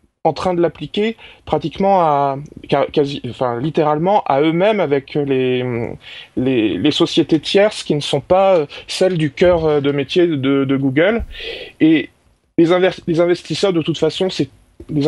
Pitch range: 150-185 Hz